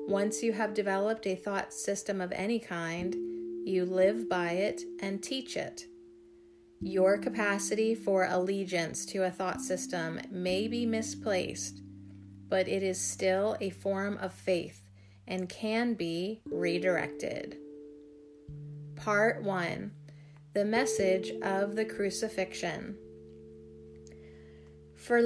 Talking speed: 115 wpm